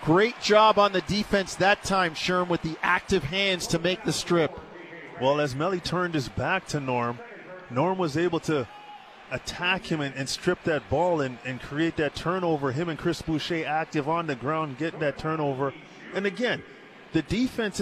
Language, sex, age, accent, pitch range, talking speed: English, male, 30-49, American, 145-180 Hz, 185 wpm